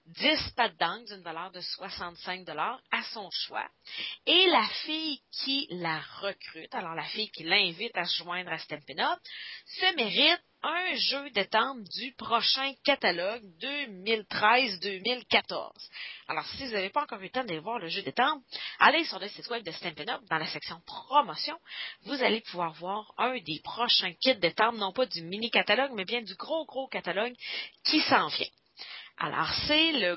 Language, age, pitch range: English, 30-49, 180-270 Hz